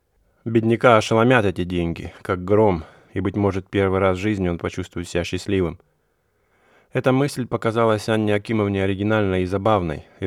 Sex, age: male, 20-39